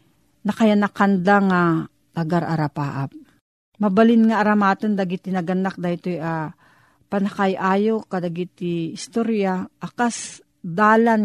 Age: 40-59